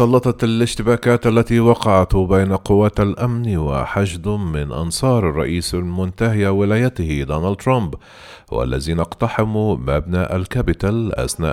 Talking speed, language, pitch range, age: 105 wpm, Arabic, 80-115 Hz, 40-59